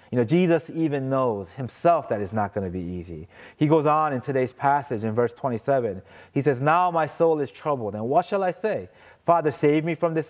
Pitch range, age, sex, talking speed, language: 115-160 Hz, 30-49, male, 225 wpm, English